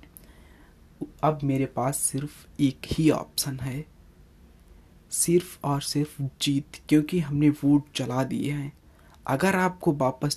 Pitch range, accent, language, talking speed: 130-160 Hz, native, Hindi, 120 wpm